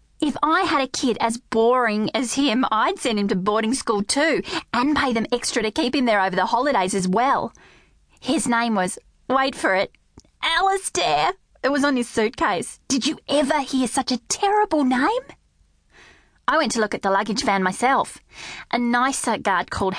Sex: female